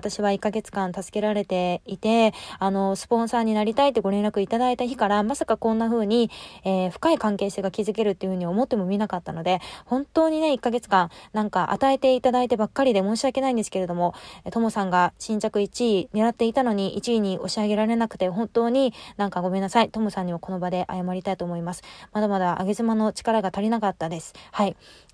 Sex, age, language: female, 20-39, Japanese